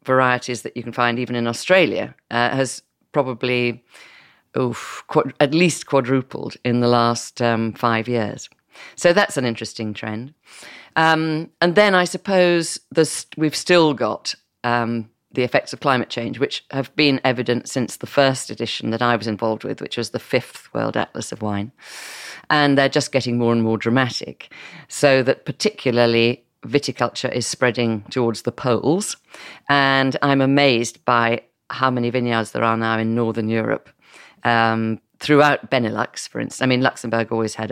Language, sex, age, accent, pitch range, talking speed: English, female, 40-59, British, 115-145 Hz, 160 wpm